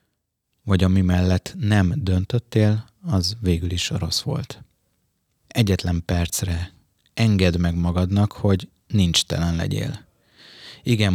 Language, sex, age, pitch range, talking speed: Hungarian, male, 20-39, 90-110 Hz, 115 wpm